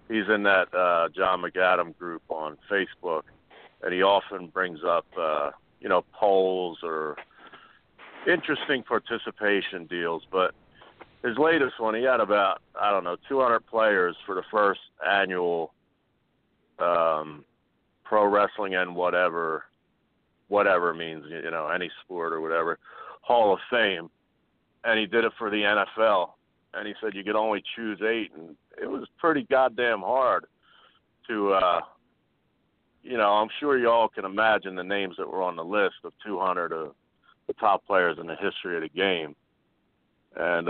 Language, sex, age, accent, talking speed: English, male, 40-59, American, 155 wpm